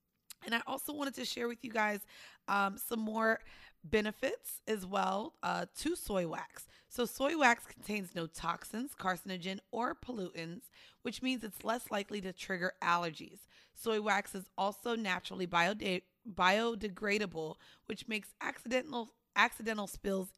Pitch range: 185-230 Hz